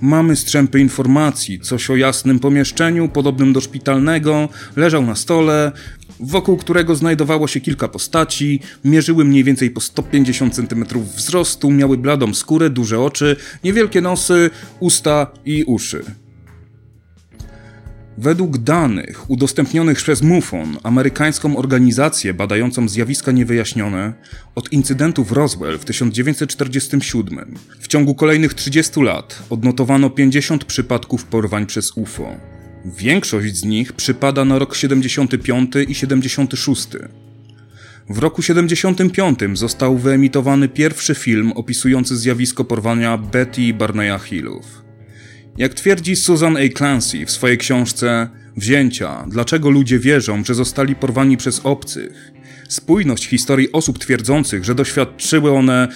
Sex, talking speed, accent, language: male, 115 wpm, native, Polish